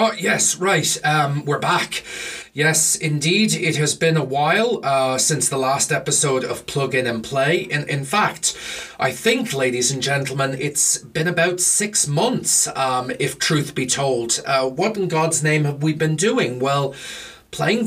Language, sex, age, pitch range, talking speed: English, male, 30-49, 130-165 Hz, 175 wpm